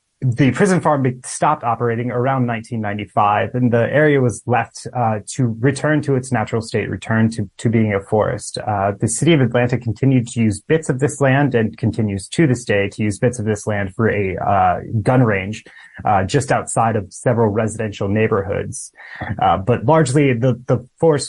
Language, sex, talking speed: English, male, 185 wpm